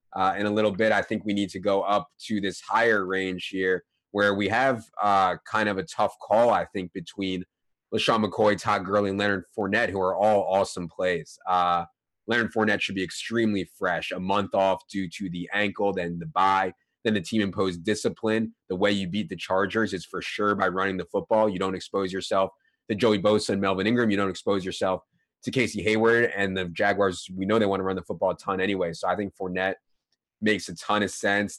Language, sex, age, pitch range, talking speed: English, male, 20-39, 95-105 Hz, 220 wpm